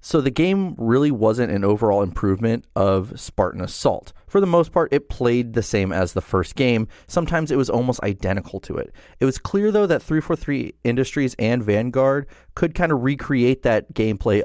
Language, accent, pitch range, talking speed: English, American, 105-150 Hz, 185 wpm